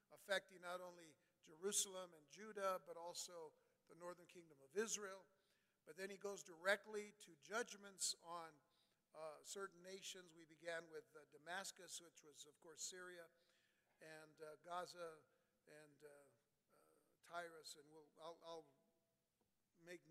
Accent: American